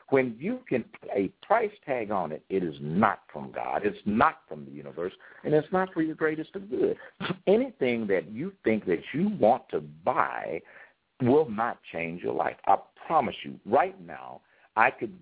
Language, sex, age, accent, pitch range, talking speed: English, male, 60-79, American, 85-130 Hz, 190 wpm